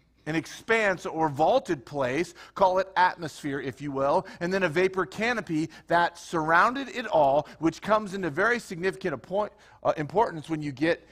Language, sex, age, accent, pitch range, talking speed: English, male, 40-59, American, 130-185 Hz, 155 wpm